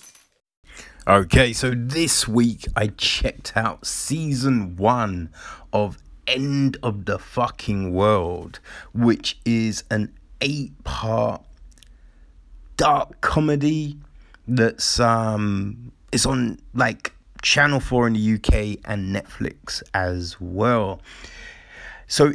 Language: English